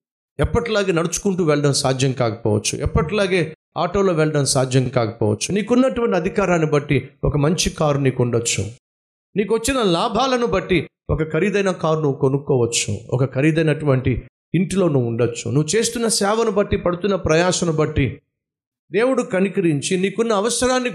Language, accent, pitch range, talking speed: Telugu, native, 125-185 Hz, 110 wpm